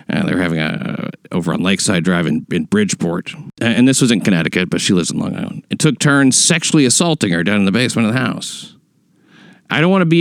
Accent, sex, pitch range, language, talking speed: American, male, 115-180 Hz, English, 255 wpm